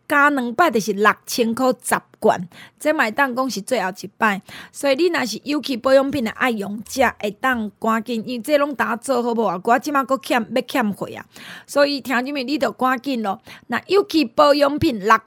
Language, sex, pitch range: Chinese, female, 225-290 Hz